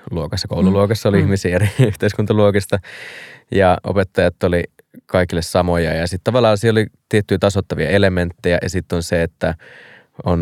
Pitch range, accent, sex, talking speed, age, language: 90-100 Hz, native, male, 140 wpm, 20-39, Finnish